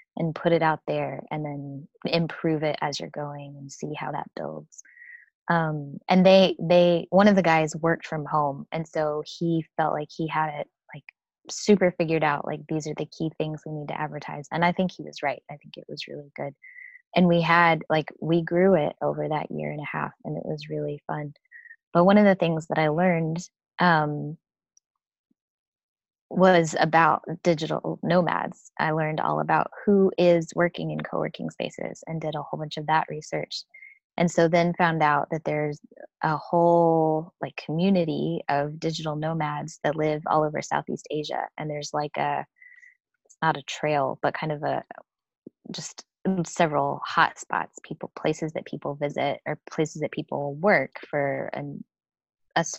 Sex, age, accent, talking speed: female, 20-39, American, 180 wpm